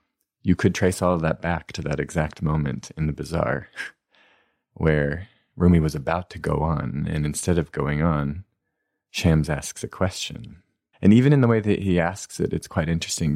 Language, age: English, 30-49